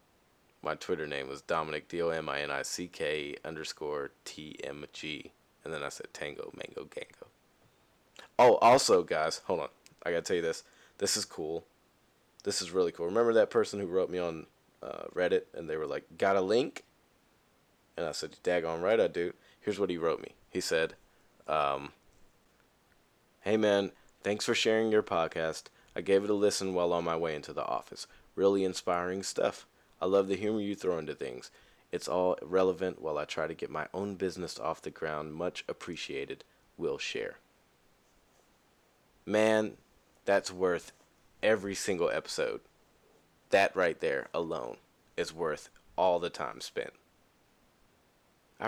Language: English